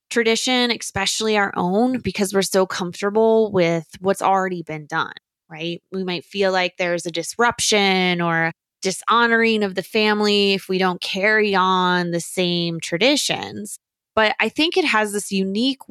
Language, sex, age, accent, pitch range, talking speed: English, female, 20-39, American, 175-210 Hz, 155 wpm